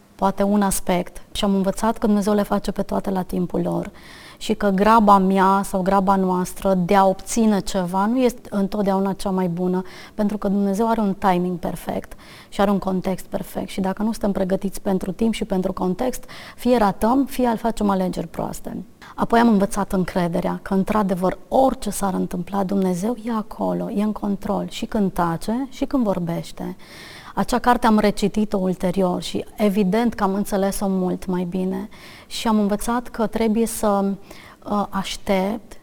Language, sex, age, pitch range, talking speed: Romanian, female, 30-49, 185-215 Hz, 170 wpm